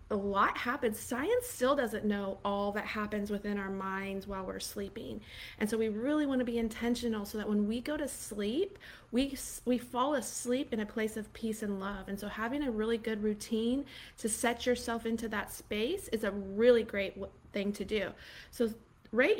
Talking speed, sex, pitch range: 195 wpm, female, 210-255 Hz